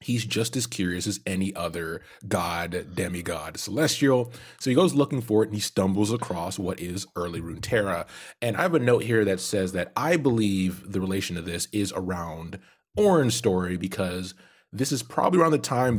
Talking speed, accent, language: 190 wpm, American, English